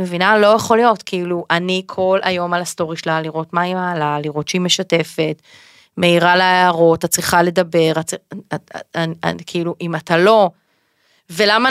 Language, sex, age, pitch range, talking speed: Hebrew, female, 30-49, 175-215 Hz, 150 wpm